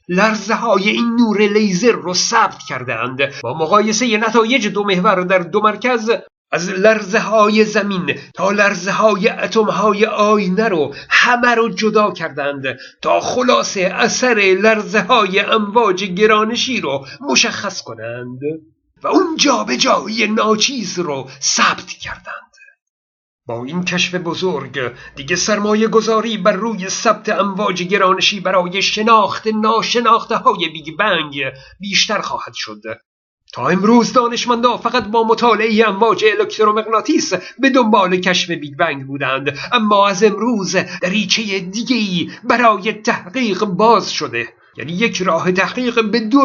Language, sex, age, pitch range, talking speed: Persian, male, 50-69, 180-230 Hz, 120 wpm